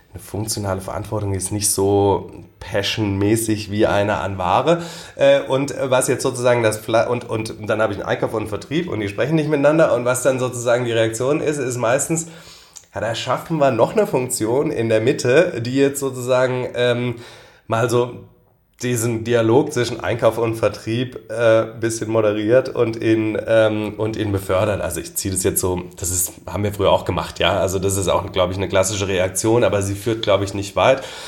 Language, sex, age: German, male, 30-49